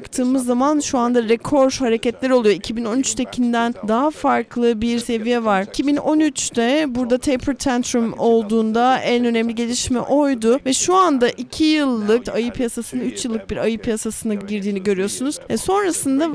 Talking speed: 135 wpm